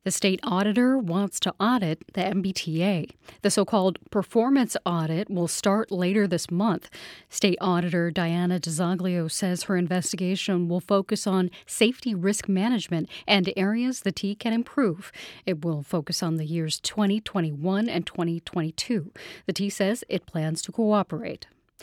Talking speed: 145 wpm